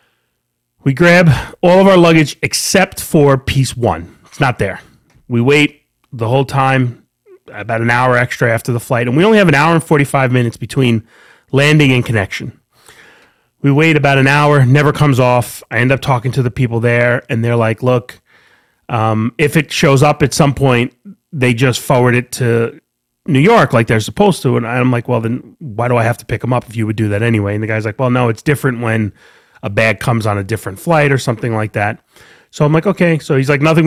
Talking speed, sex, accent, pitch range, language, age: 220 wpm, male, American, 115-145 Hz, English, 30-49